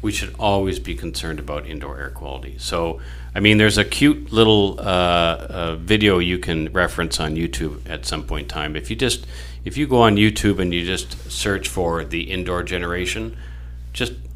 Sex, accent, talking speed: male, American, 190 wpm